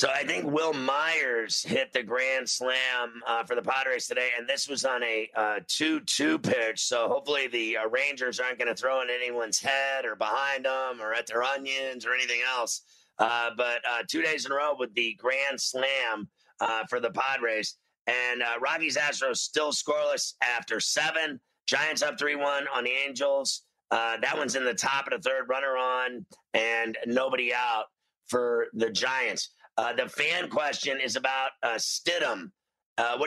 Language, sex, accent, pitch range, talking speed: English, male, American, 125-150 Hz, 180 wpm